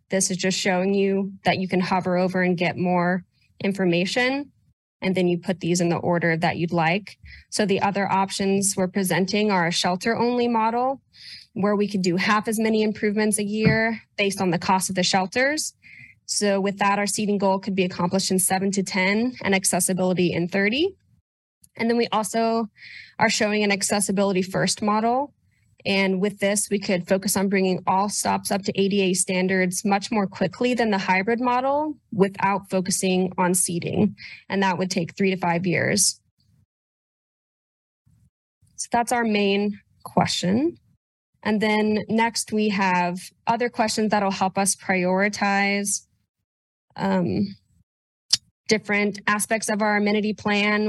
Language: English